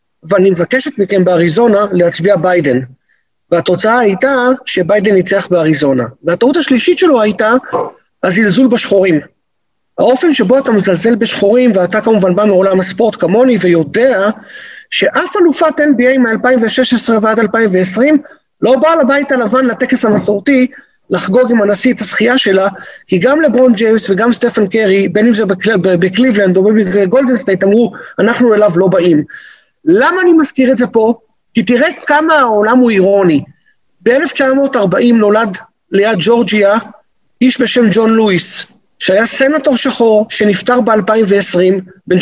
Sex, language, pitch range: male, Hebrew, 195-260 Hz